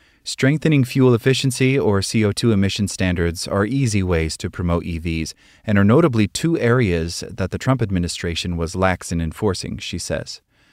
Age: 30-49